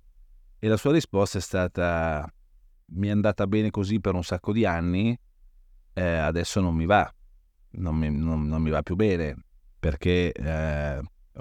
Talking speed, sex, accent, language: 165 wpm, male, native, Italian